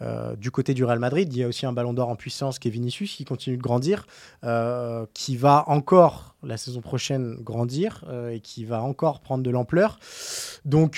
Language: French